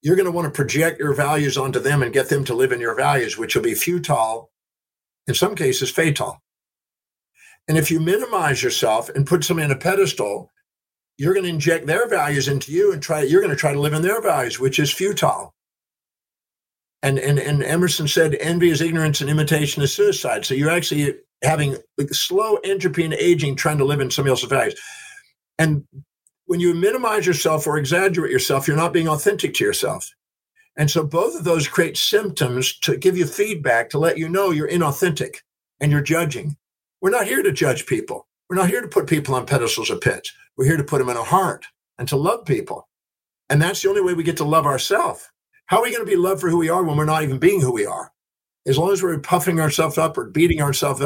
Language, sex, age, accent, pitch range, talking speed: English, male, 50-69, American, 145-190 Hz, 220 wpm